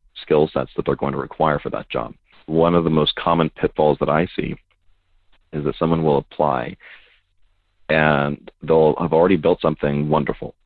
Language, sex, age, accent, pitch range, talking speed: English, male, 40-59, American, 70-80 Hz, 175 wpm